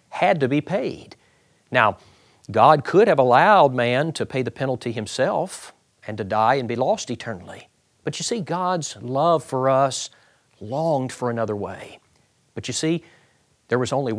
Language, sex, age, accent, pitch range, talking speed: English, male, 40-59, American, 115-150 Hz, 165 wpm